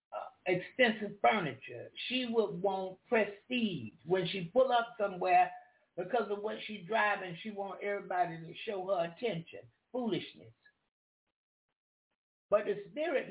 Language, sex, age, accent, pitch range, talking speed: English, male, 60-79, American, 180-225 Hz, 120 wpm